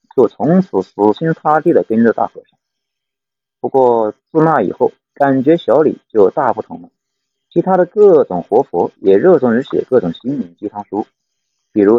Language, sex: Chinese, male